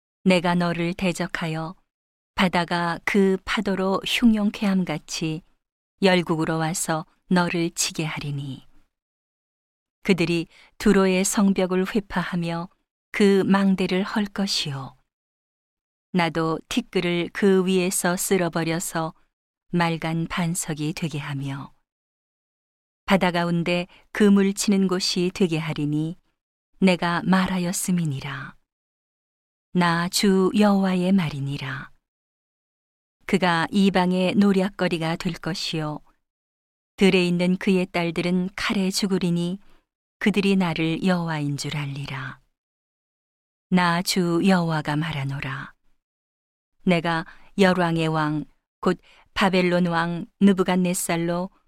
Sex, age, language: female, 40-59, Korean